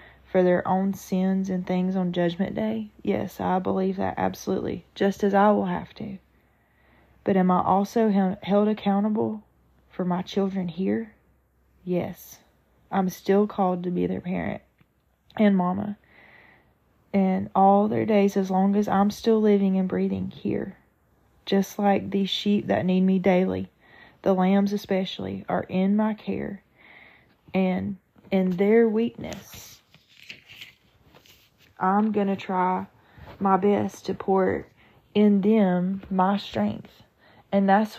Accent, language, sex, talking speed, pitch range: American, English, female, 135 wpm, 180-200 Hz